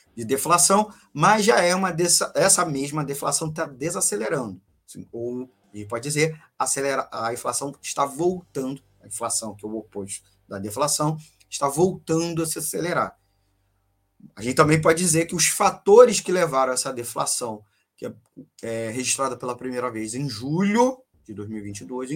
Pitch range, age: 120-170 Hz, 20-39